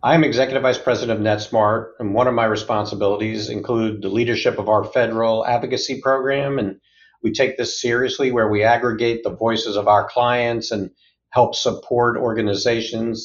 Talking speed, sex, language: 165 wpm, male, English